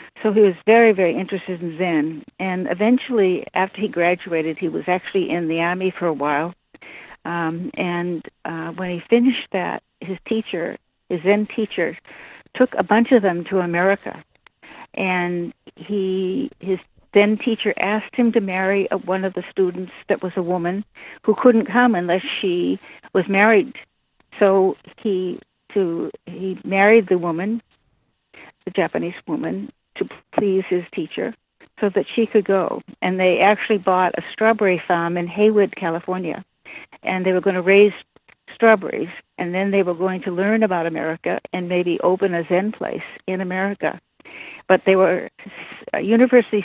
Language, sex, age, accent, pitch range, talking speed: English, female, 60-79, American, 175-210 Hz, 155 wpm